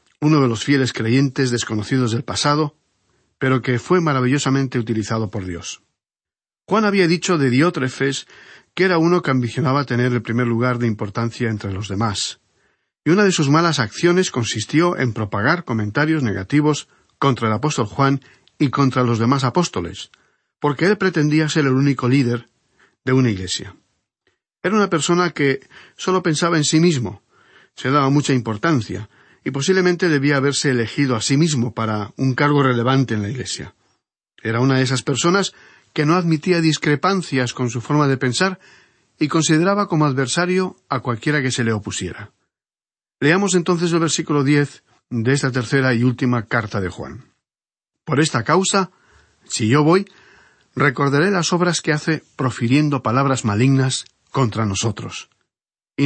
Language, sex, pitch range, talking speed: Spanish, male, 120-160 Hz, 155 wpm